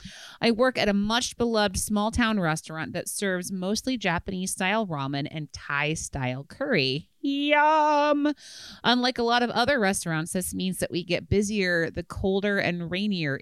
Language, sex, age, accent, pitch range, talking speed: English, female, 30-49, American, 160-220 Hz, 145 wpm